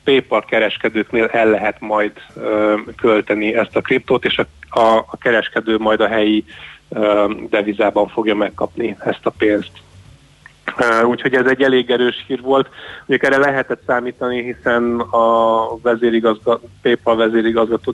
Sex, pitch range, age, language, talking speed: male, 110-120 Hz, 30-49, Hungarian, 125 wpm